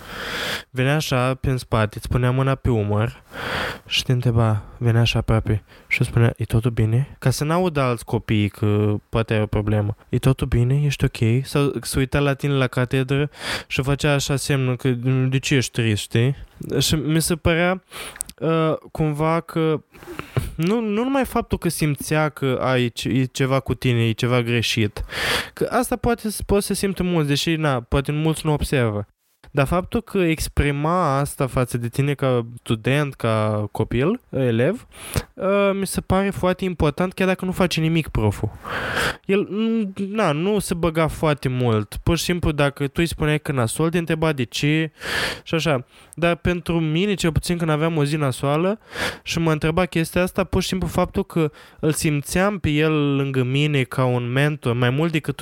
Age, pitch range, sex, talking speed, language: 20-39, 125-165 Hz, male, 180 wpm, Romanian